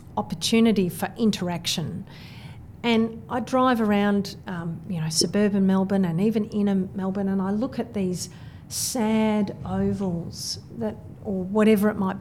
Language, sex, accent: English, female, Australian